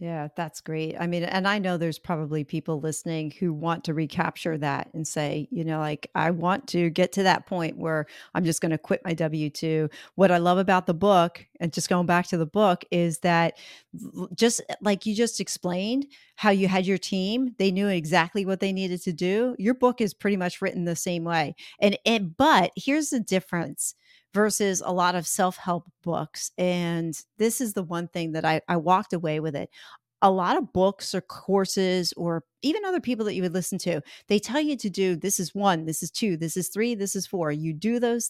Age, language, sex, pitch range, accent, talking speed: 40-59, English, female, 165-200 Hz, American, 220 wpm